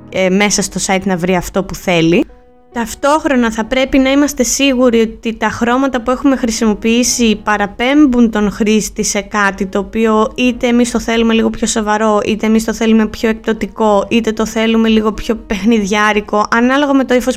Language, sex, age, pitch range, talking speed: Greek, female, 20-39, 215-260 Hz, 175 wpm